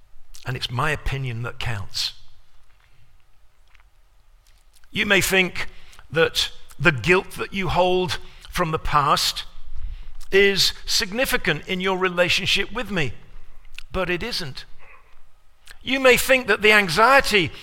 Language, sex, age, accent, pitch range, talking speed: English, male, 50-69, British, 125-210 Hz, 115 wpm